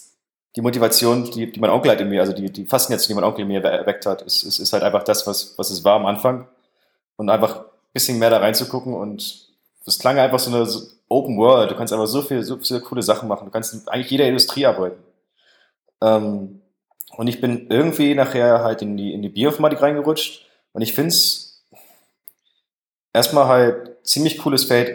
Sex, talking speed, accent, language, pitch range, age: male, 205 wpm, German, German, 110-135 Hz, 20-39